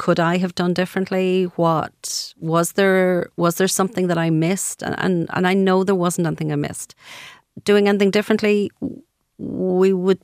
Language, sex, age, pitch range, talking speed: English, female, 40-59, 155-185 Hz, 170 wpm